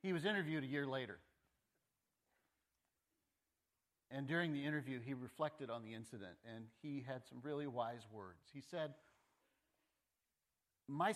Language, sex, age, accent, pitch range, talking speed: English, male, 50-69, American, 95-145 Hz, 135 wpm